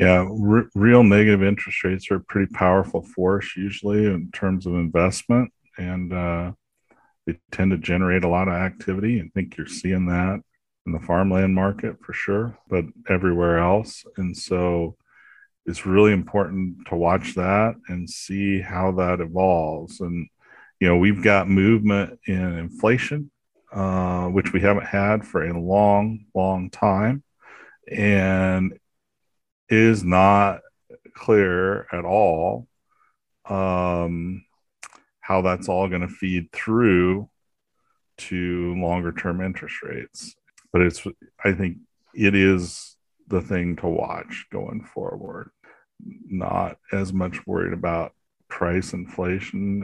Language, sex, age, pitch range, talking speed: English, male, 40-59, 90-100 Hz, 130 wpm